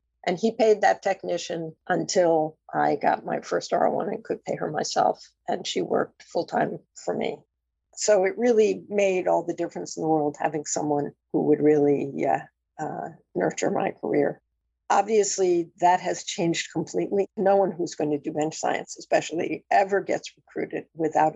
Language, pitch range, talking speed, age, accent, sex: English, 155-200 Hz, 170 wpm, 50-69, American, female